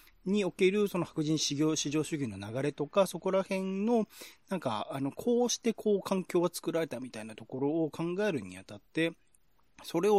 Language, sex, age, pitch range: Japanese, male, 30-49, 120-195 Hz